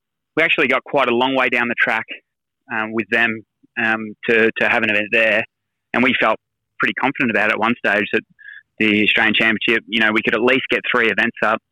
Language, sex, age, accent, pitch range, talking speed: English, male, 20-39, Australian, 110-120 Hz, 215 wpm